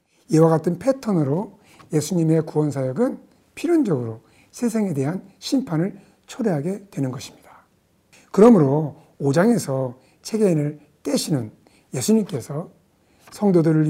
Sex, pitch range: male, 145-215 Hz